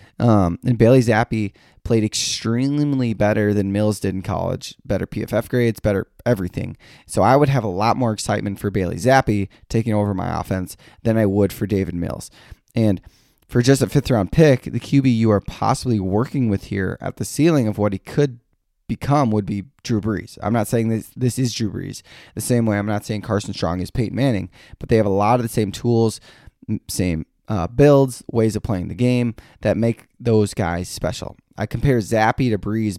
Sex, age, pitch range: male, 20-39, 100-120 Hz